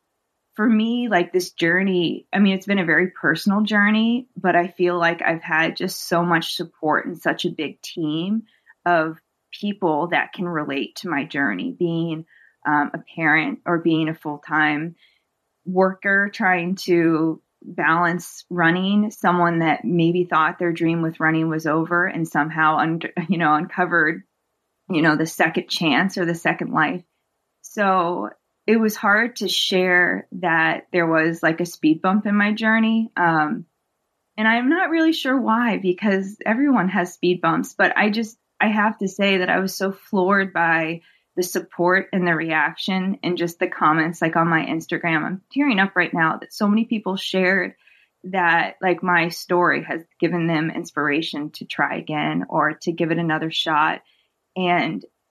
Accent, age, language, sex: American, 20-39, English, female